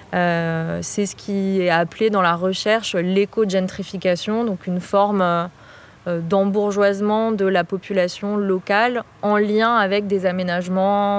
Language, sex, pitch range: French, female, 185-215 Hz